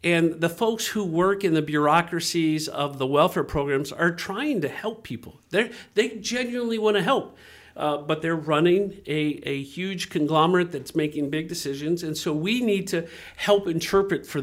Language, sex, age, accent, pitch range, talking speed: English, male, 50-69, American, 160-195 Hz, 180 wpm